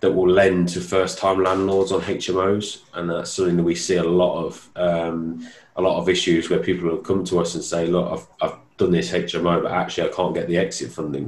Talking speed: 235 wpm